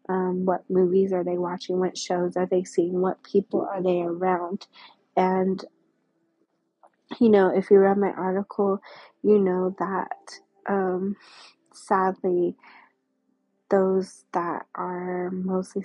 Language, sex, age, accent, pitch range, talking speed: English, female, 20-39, American, 180-200 Hz, 125 wpm